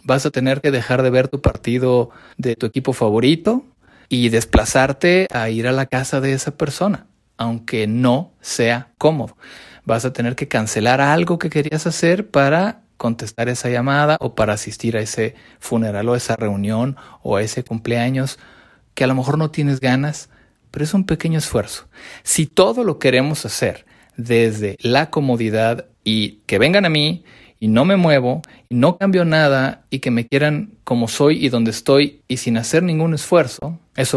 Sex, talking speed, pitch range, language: male, 175 wpm, 115-145 Hz, Spanish